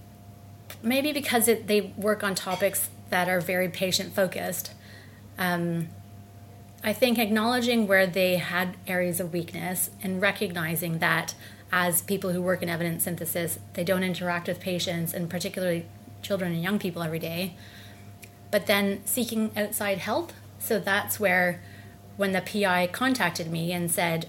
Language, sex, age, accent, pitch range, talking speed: English, female, 30-49, American, 165-200 Hz, 140 wpm